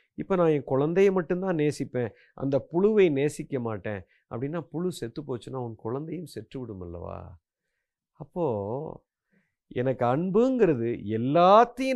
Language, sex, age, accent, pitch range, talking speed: Tamil, male, 50-69, native, 125-205 Hz, 110 wpm